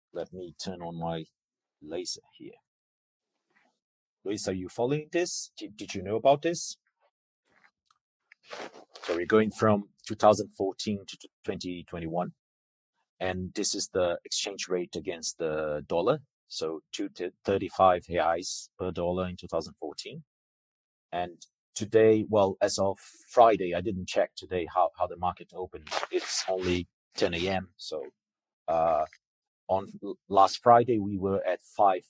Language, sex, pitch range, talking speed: English, male, 90-110 Hz, 130 wpm